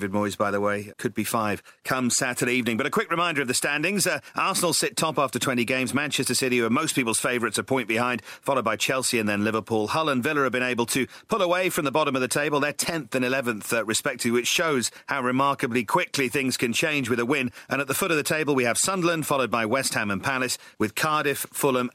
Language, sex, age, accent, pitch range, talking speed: English, male, 40-59, British, 120-160 Hz, 255 wpm